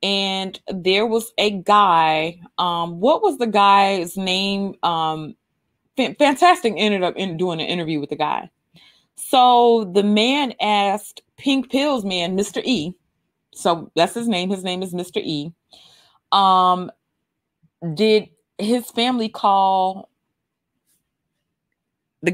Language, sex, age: English, female, 30-49